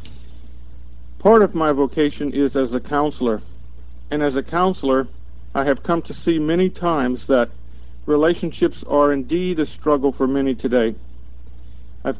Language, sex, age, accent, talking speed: English, male, 50-69, American, 145 wpm